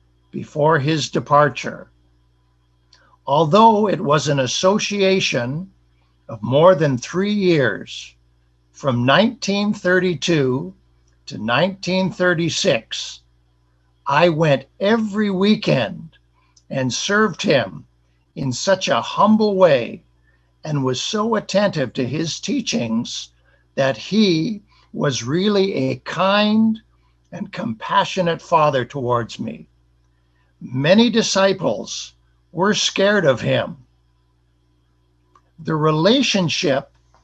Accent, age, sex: American, 60-79, male